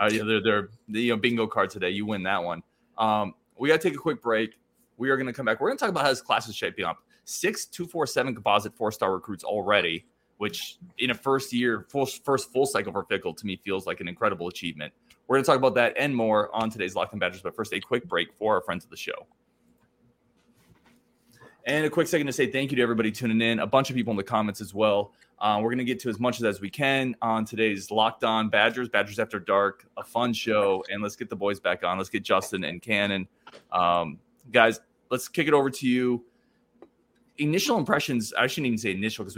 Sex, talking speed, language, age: male, 240 wpm, English, 20-39